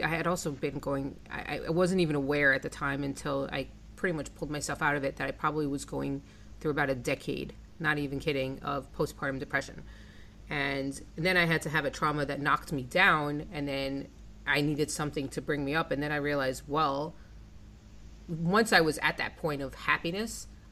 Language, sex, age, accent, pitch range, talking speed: English, female, 30-49, American, 140-170 Hz, 205 wpm